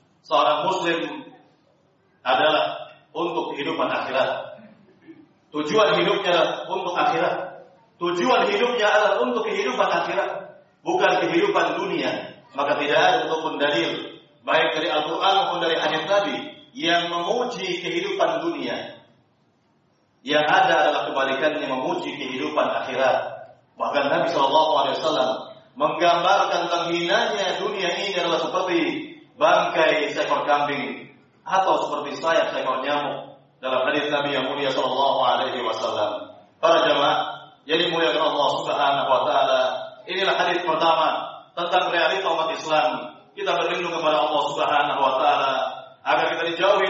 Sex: male